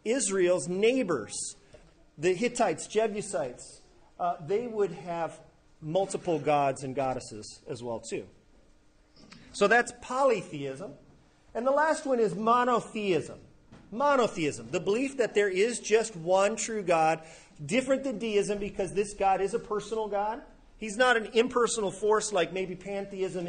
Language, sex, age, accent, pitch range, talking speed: English, male, 40-59, American, 165-225 Hz, 135 wpm